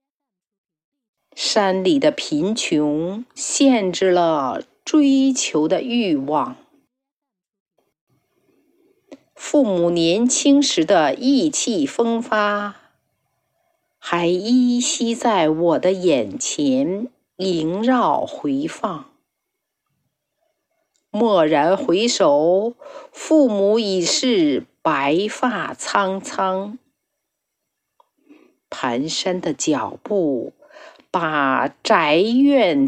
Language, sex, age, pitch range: Chinese, female, 50-69, 205-300 Hz